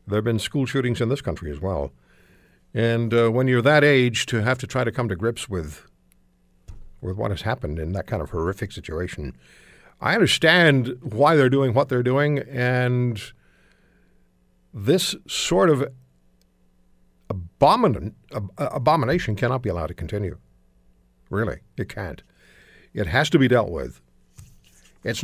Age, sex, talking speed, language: 60-79, male, 155 wpm, English